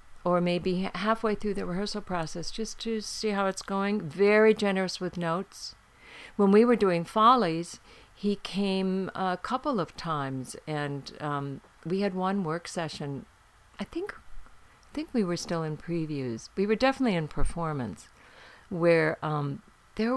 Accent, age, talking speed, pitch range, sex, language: American, 50-69, 155 wpm, 160-210 Hz, female, English